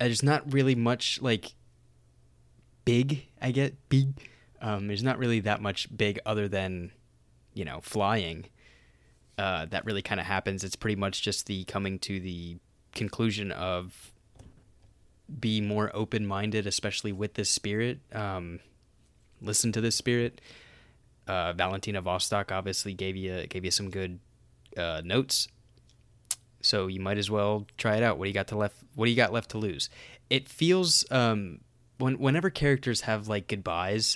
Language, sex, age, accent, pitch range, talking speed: English, male, 20-39, American, 95-115 Hz, 160 wpm